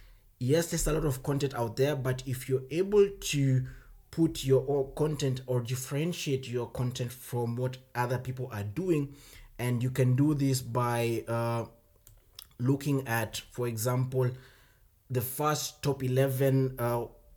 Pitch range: 115-140 Hz